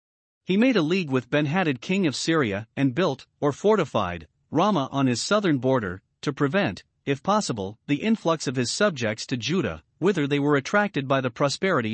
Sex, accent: male, American